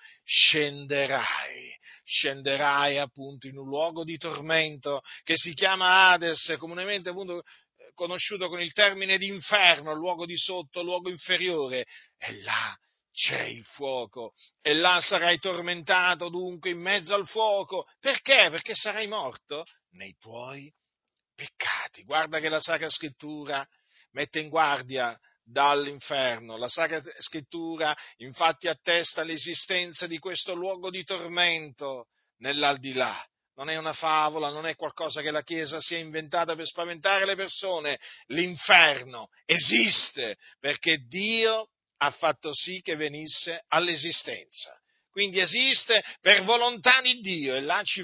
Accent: native